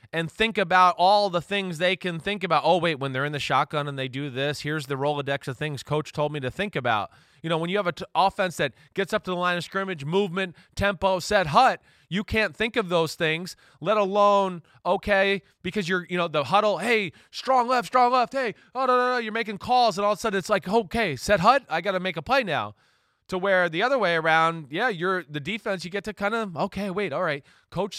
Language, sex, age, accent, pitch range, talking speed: English, male, 20-39, American, 155-200 Hz, 250 wpm